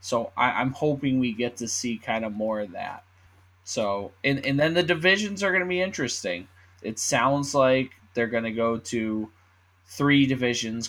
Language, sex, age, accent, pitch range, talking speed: English, male, 10-29, American, 100-130 Hz, 185 wpm